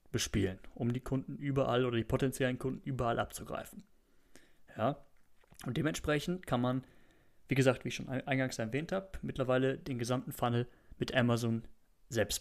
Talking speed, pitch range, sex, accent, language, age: 150 wpm, 115-140 Hz, male, German, German, 30-49